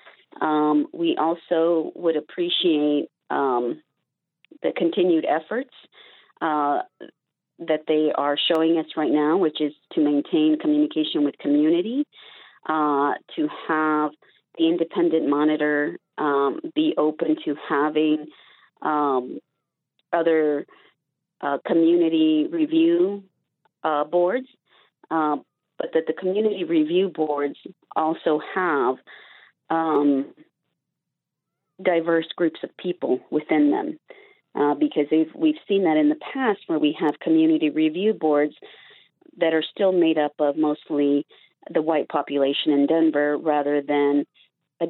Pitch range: 145-190 Hz